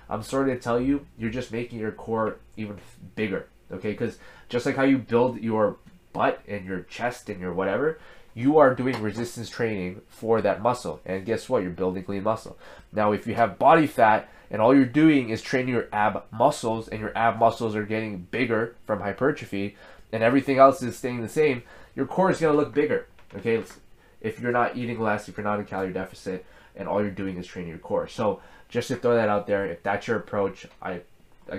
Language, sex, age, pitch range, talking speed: English, male, 20-39, 100-125 Hz, 215 wpm